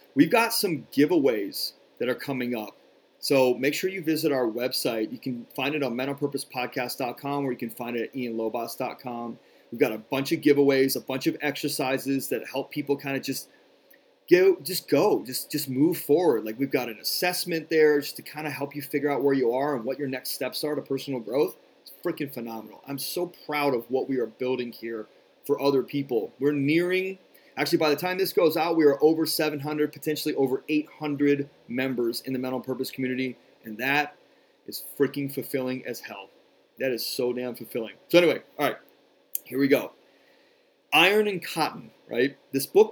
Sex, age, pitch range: male, 30-49, 130-150 Hz